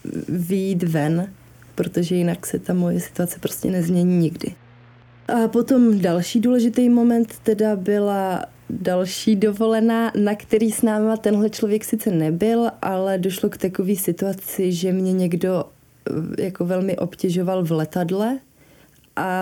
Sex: female